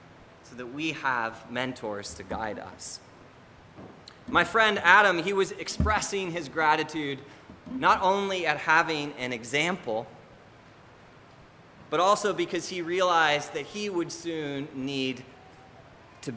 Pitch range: 115-155 Hz